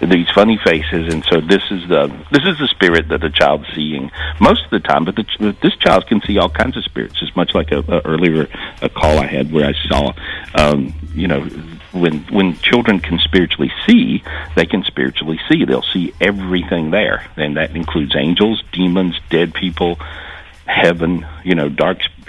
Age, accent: 60-79, American